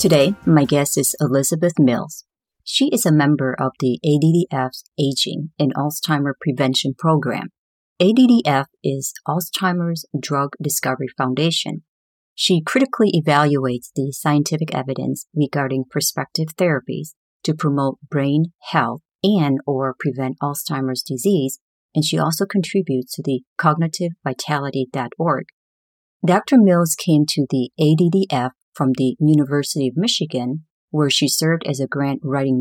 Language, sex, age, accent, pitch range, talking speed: English, female, 40-59, American, 135-165 Hz, 125 wpm